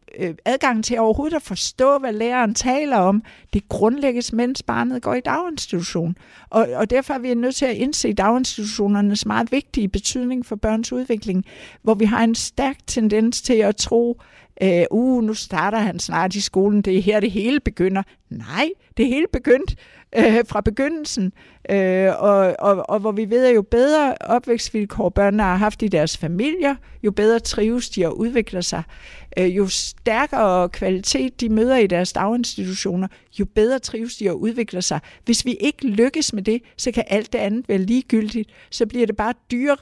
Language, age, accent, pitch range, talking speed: Danish, 60-79, native, 195-240 Hz, 180 wpm